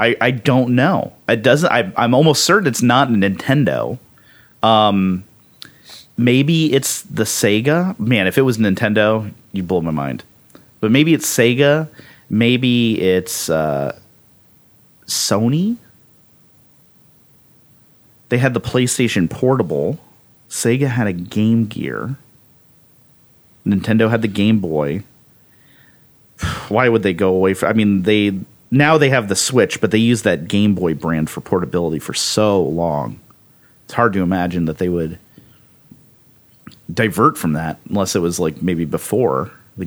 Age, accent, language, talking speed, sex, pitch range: 30-49, American, English, 140 wpm, male, 95-125 Hz